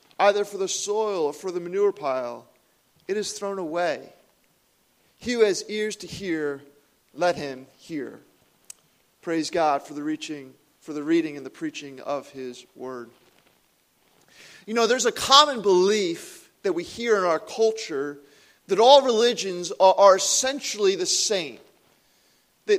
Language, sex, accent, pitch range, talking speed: English, male, American, 180-255 Hz, 145 wpm